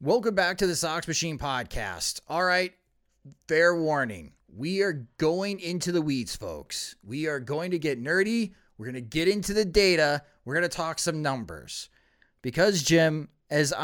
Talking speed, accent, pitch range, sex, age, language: 175 wpm, American, 125-165 Hz, male, 30-49, English